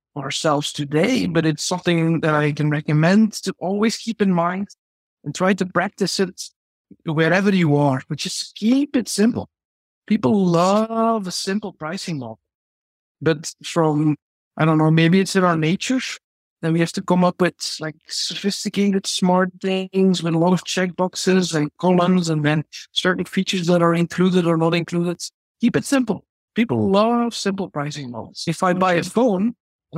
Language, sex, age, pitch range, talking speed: English, male, 60-79, 160-195 Hz, 170 wpm